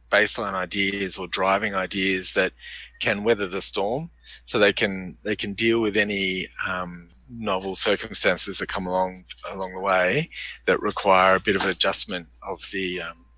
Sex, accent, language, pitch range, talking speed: male, Australian, English, 95-110 Hz, 165 wpm